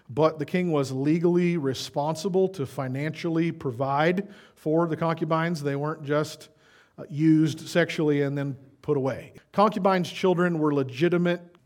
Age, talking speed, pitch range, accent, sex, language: 40-59, 130 wpm, 145-180 Hz, American, male, English